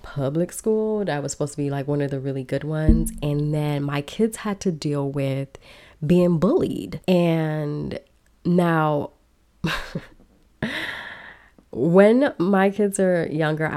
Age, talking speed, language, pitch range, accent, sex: 20-39, 135 wpm, English, 145-175 Hz, American, female